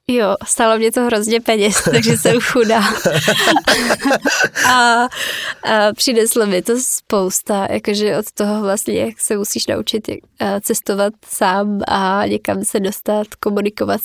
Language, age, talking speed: Slovak, 20-39, 130 wpm